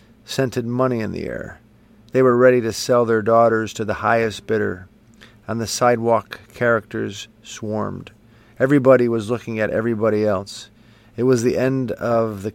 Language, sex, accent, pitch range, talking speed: English, male, American, 105-115 Hz, 160 wpm